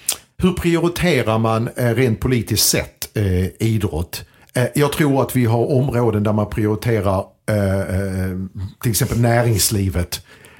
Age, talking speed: 50-69, 125 wpm